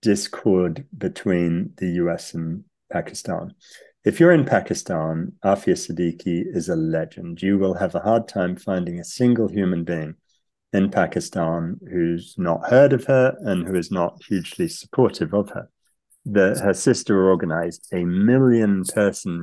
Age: 40-59